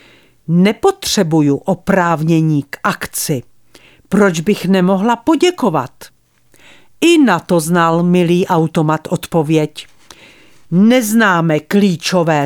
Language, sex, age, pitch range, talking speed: Czech, female, 50-69, 165-225 Hz, 80 wpm